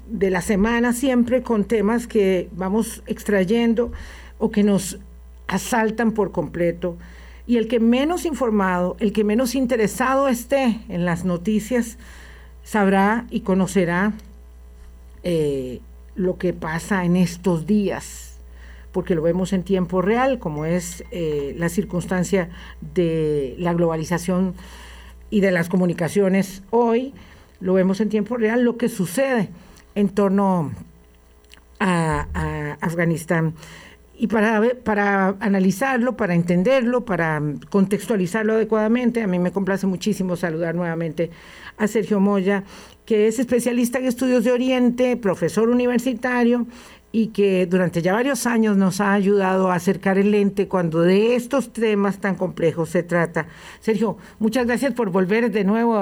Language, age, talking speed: Spanish, 50-69, 135 wpm